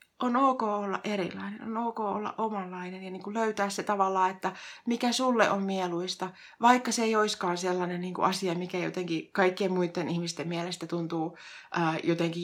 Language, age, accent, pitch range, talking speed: Finnish, 30-49, native, 175-200 Hz, 150 wpm